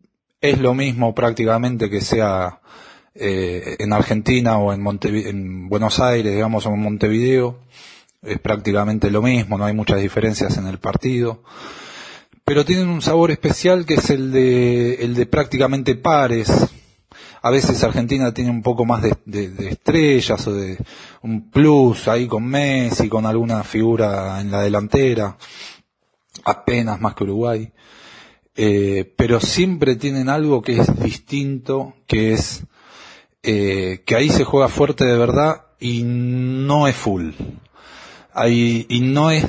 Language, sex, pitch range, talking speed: Spanish, male, 110-135 Hz, 145 wpm